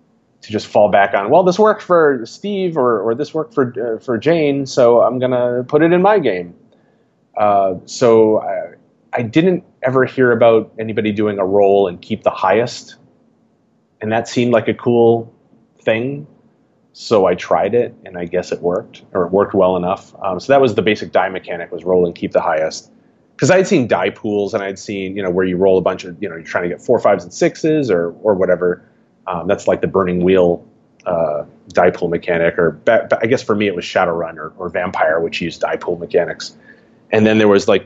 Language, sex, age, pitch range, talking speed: English, male, 30-49, 95-125 Hz, 220 wpm